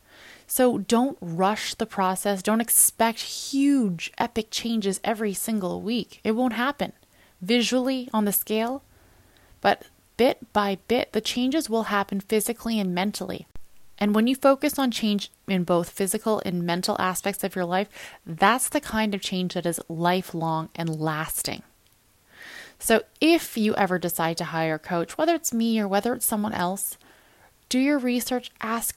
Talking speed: 160 wpm